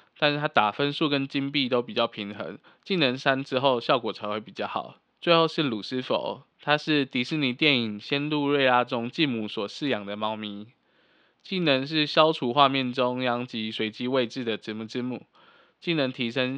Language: Chinese